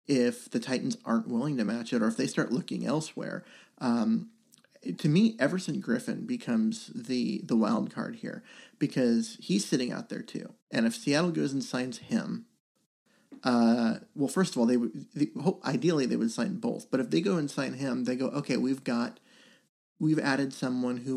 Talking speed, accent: 185 wpm, American